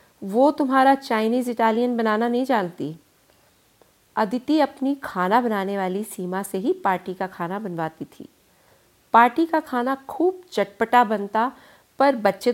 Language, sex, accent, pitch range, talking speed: Hindi, female, native, 190-250 Hz, 135 wpm